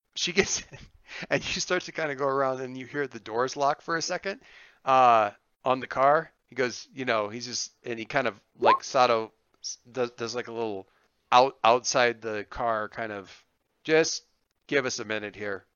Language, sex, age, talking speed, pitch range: English, male, 40-59, 200 wpm, 115-145 Hz